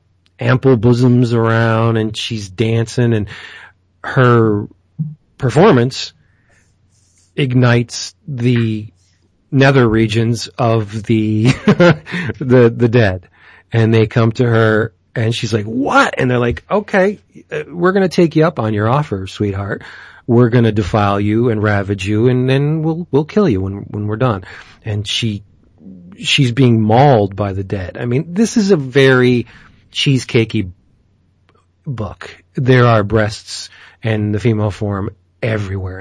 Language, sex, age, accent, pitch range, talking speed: English, male, 40-59, American, 100-130 Hz, 140 wpm